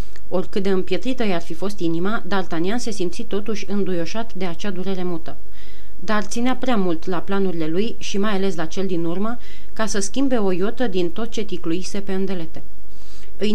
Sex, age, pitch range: female, 30-49, 180-215 Hz